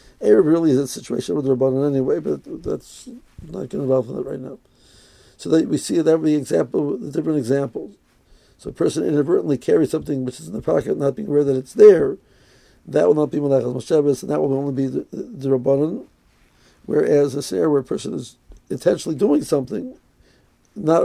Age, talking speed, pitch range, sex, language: 60-79, 200 wpm, 135-160 Hz, male, English